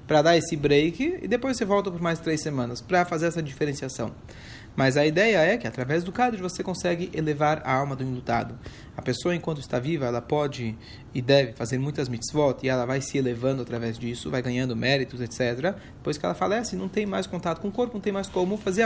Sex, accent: male, Brazilian